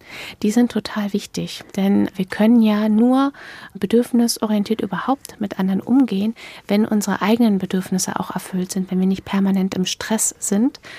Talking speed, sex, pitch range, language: 155 wpm, female, 190-225 Hz, German